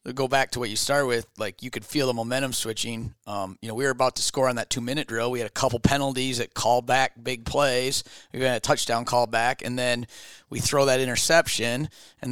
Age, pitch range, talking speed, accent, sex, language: 30-49, 115-135 Hz, 245 wpm, American, male, English